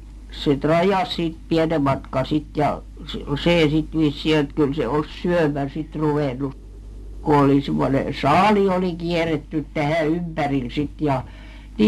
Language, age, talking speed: Finnish, 60-79, 125 wpm